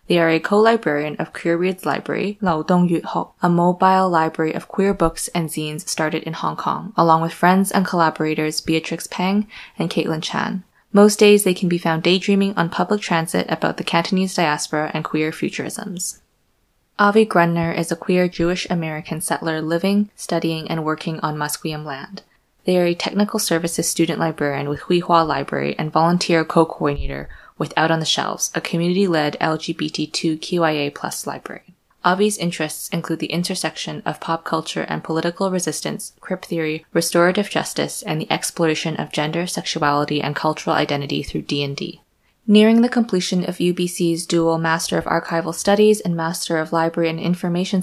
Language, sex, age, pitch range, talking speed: English, female, 20-39, 155-180 Hz, 160 wpm